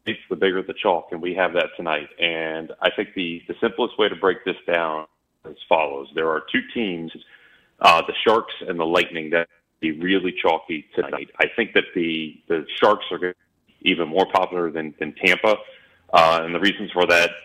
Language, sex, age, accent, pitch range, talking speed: English, male, 30-49, American, 80-95 Hz, 200 wpm